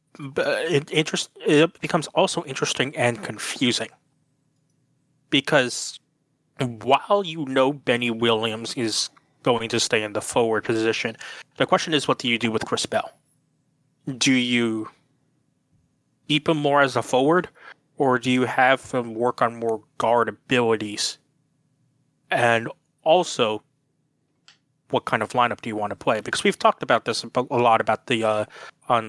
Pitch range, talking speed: 115-145 Hz, 145 wpm